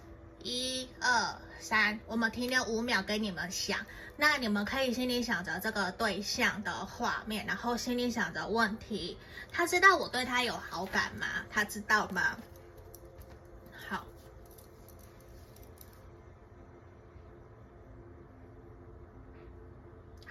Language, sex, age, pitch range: Chinese, female, 20-39, 190-245 Hz